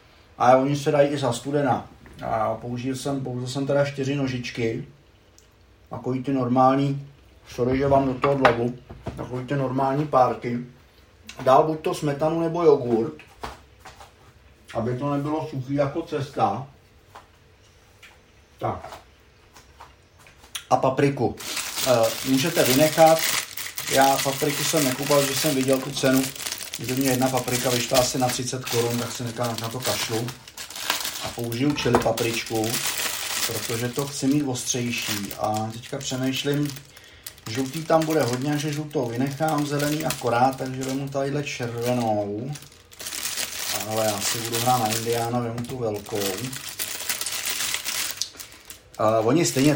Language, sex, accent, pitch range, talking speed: Czech, male, native, 115-140 Hz, 130 wpm